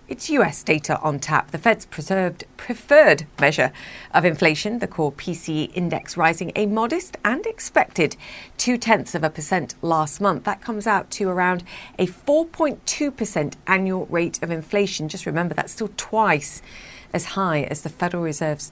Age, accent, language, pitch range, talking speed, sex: 40-59, British, English, 155-205 Hz, 155 wpm, female